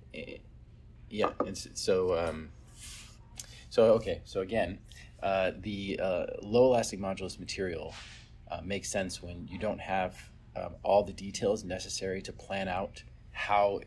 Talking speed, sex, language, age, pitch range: 135 wpm, male, English, 30-49, 85-105 Hz